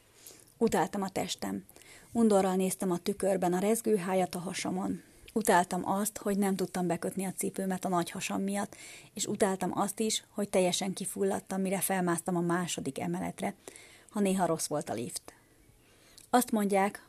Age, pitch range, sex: 30-49, 175-200 Hz, female